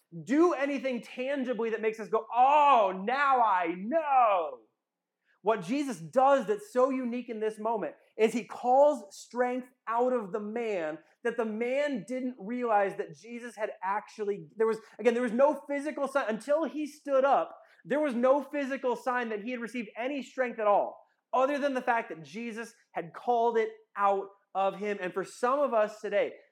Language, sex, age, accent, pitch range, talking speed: English, male, 30-49, American, 215-260 Hz, 180 wpm